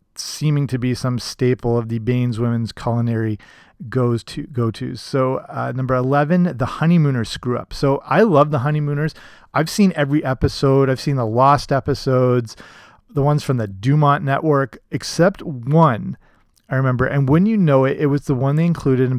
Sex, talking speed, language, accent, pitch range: male, 180 wpm, English, American, 120-145 Hz